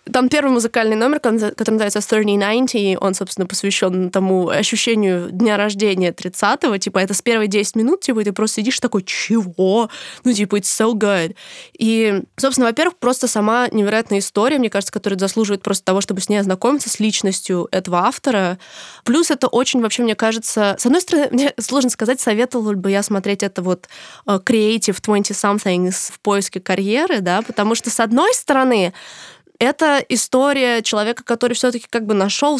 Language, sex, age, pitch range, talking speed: Russian, female, 20-39, 190-230 Hz, 170 wpm